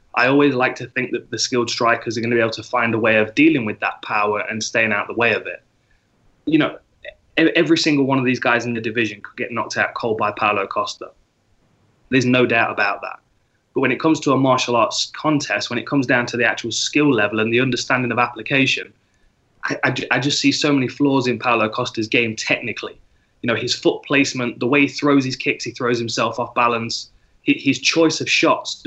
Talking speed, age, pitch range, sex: 230 wpm, 20-39, 120-145 Hz, male